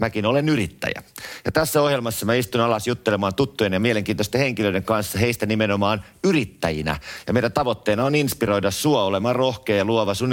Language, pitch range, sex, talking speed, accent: Finnish, 90-110 Hz, male, 170 wpm, native